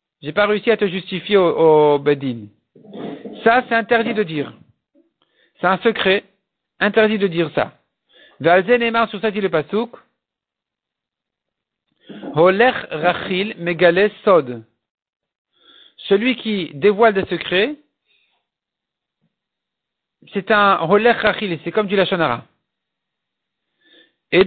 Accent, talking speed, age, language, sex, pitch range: French, 90 wpm, 50-69, French, male, 170-220 Hz